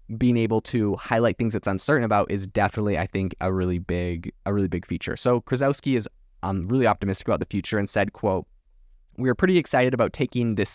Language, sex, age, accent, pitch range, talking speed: English, male, 20-39, American, 95-120 Hz, 210 wpm